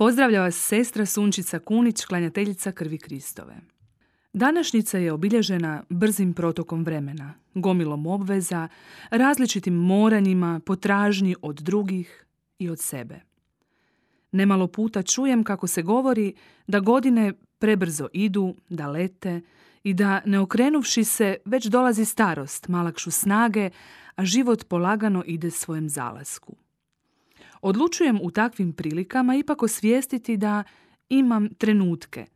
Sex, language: female, Croatian